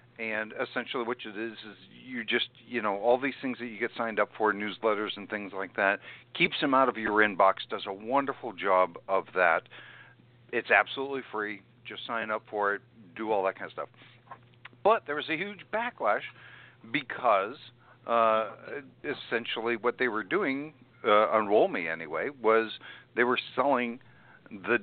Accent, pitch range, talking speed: American, 105-125 Hz, 175 wpm